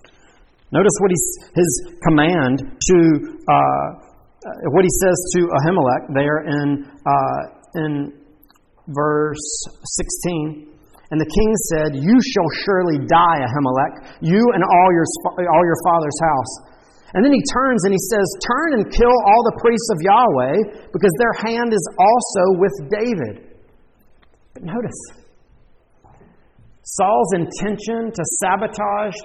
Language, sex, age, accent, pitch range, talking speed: English, male, 40-59, American, 155-210 Hz, 130 wpm